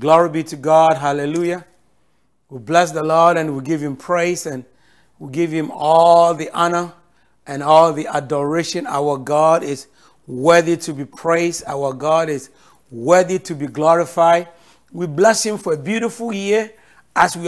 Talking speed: 165 wpm